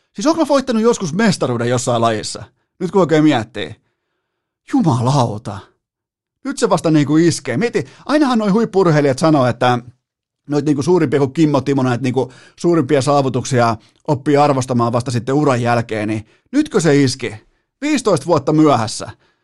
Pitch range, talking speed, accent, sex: 125-165 Hz, 145 wpm, native, male